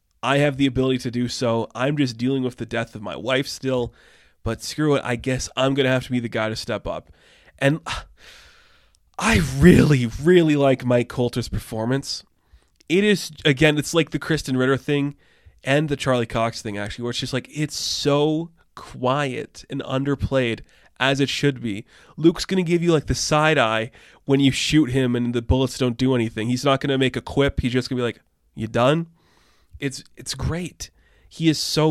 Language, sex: English, male